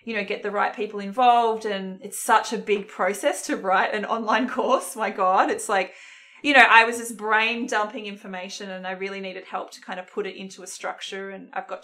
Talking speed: 235 wpm